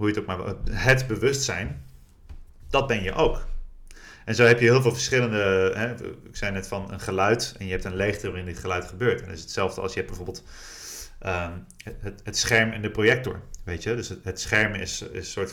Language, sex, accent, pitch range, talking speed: Dutch, male, Dutch, 90-115 Hz, 225 wpm